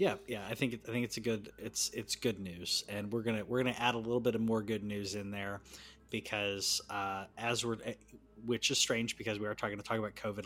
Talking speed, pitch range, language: 260 wpm, 110-125 Hz, English